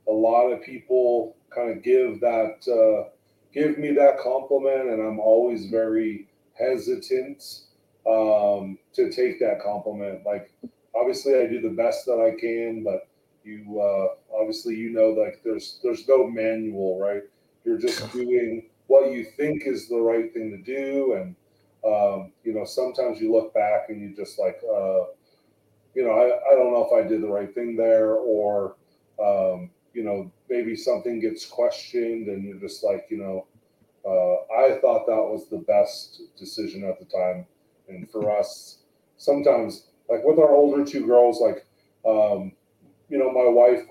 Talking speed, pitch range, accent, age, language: 170 wpm, 105-145 Hz, American, 30-49, English